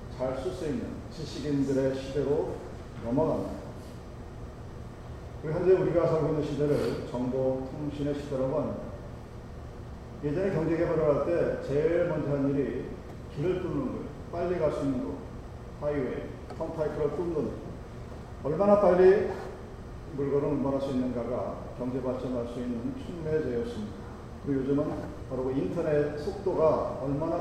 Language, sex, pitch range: Korean, male, 130-160 Hz